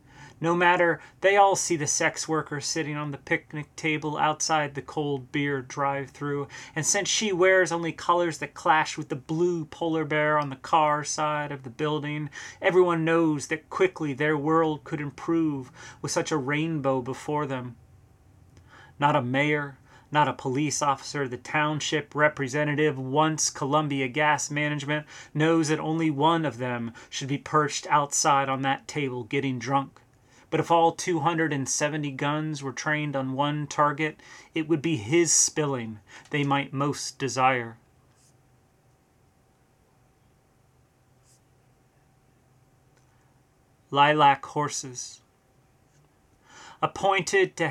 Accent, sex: American, male